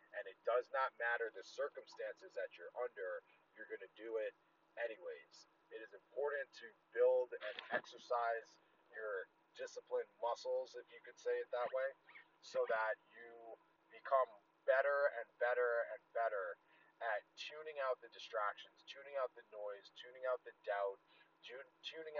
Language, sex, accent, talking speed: English, male, American, 150 wpm